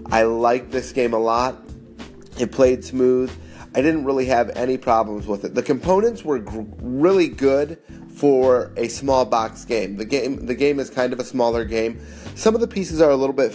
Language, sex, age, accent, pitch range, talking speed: English, male, 30-49, American, 115-145 Hz, 195 wpm